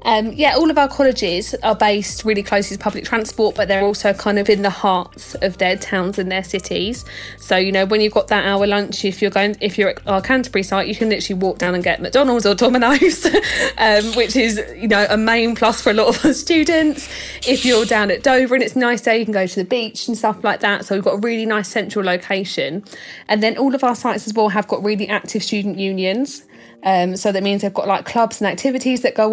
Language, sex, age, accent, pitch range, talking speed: English, female, 20-39, British, 190-235 Hz, 250 wpm